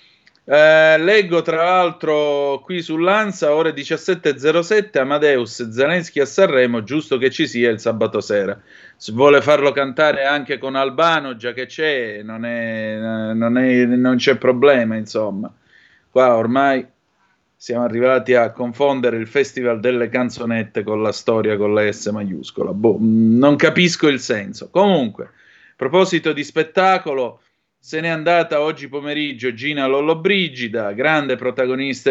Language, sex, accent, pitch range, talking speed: Italian, male, native, 120-160 Hz, 135 wpm